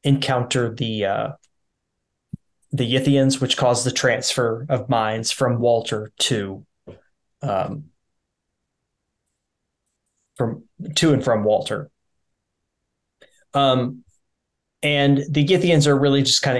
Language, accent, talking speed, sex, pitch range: English, American, 100 wpm, male, 120-145 Hz